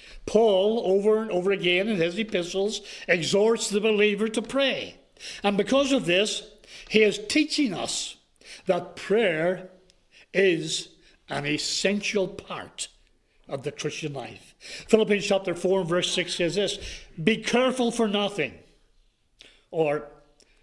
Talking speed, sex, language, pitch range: 125 wpm, male, English, 175-220 Hz